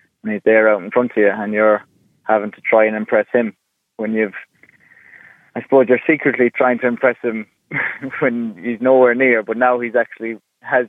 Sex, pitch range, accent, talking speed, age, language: male, 105-115 Hz, British, 185 wpm, 20-39, English